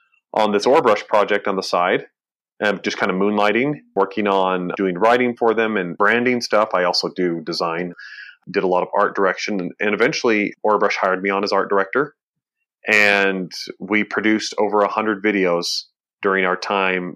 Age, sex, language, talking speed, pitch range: 30-49, male, English, 170 wpm, 95-115 Hz